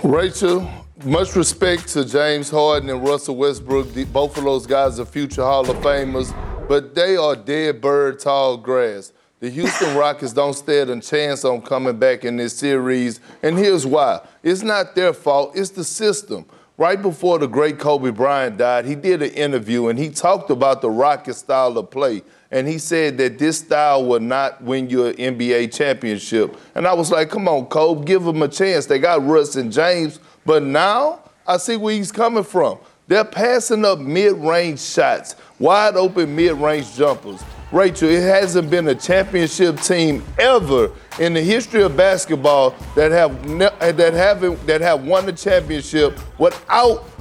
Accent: American